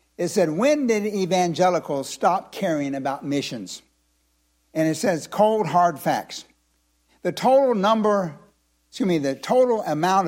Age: 60-79